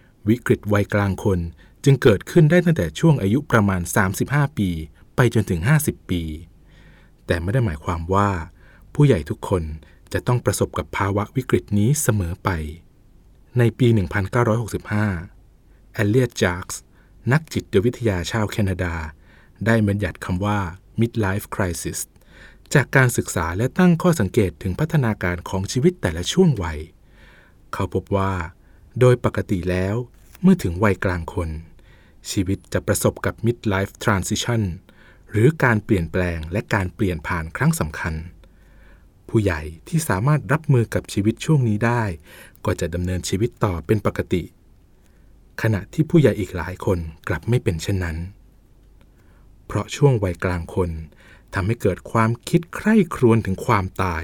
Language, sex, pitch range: Thai, male, 90-120 Hz